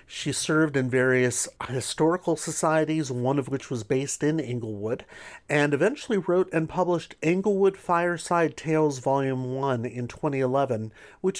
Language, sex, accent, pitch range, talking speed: English, male, American, 125-170 Hz, 135 wpm